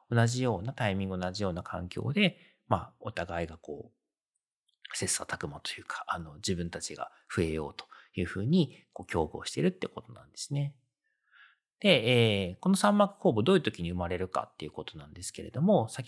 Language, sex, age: Japanese, male, 40-59